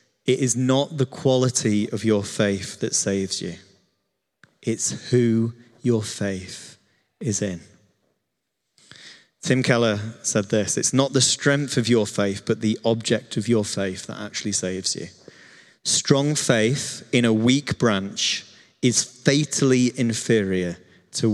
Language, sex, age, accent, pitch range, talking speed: English, male, 30-49, British, 105-135 Hz, 135 wpm